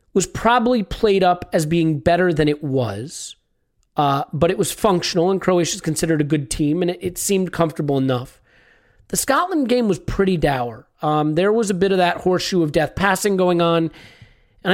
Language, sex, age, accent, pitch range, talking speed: English, male, 40-59, American, 155-195 Hz, 195 wpm